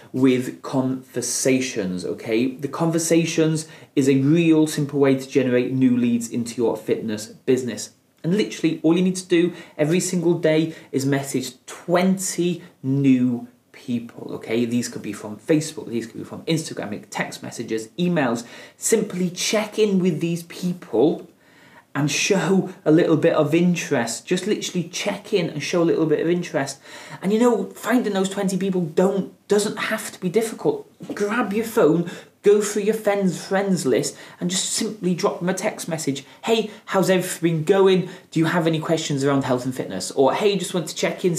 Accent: British